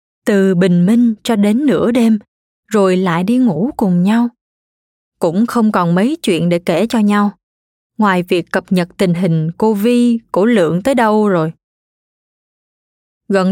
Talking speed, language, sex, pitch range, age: 155 wpm, Vietnamese, female, 190-240 Hz, 20-39